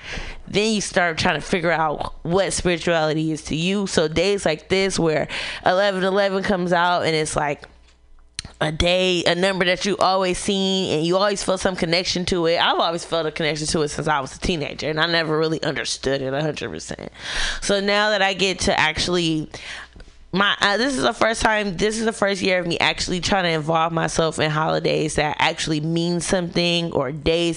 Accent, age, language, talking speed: American, 10-29, English, 205 wpm